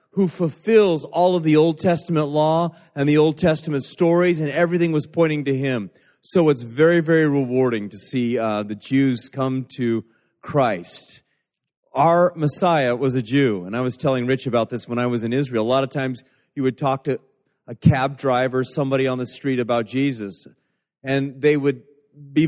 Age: 30-49